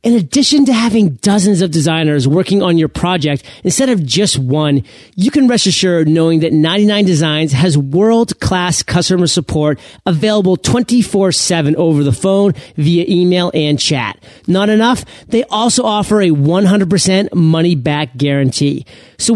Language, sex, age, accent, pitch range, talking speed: English, male, 40-59, American, 155-205 Hz, 140 wpm